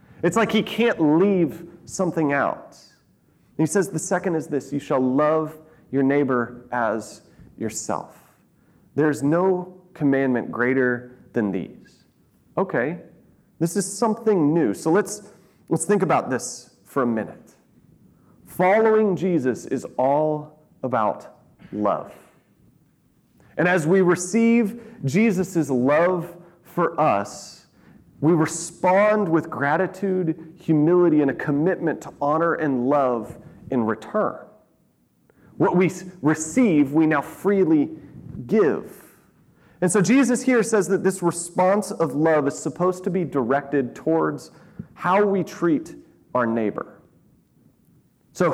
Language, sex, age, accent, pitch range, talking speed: English, male, 30-49, American, 150-195 Hz, 120 wpm